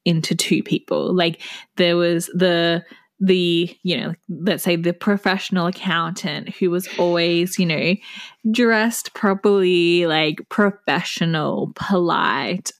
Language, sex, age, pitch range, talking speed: English, female, 10-29, 170-200 Hz, 115 wpm